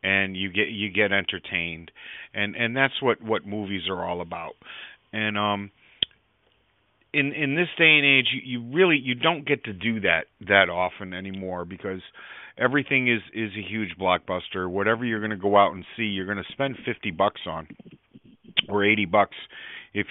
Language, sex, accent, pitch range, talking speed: English, male, American, 100-120 Hz, 180 wpm